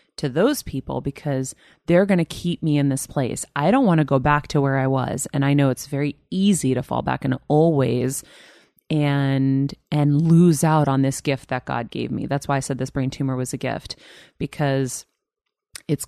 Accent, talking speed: American, 215 wpm